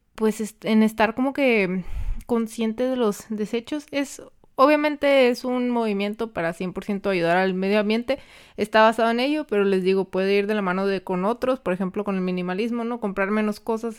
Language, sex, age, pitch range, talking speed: Spanish, female, 20-39, 205-260 Hz, 190 wpm